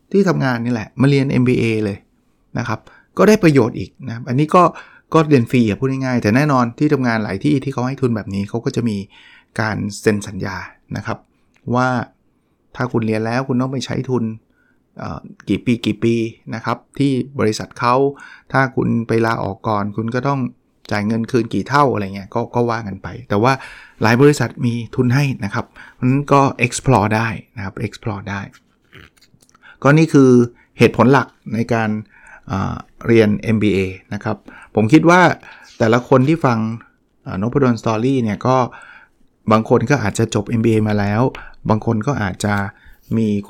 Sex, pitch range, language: male, 105-130 Hz, Thai